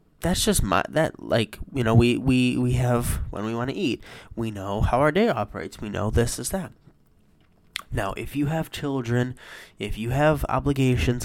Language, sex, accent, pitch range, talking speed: English, male, American, 100-125 Hz, 190 wpm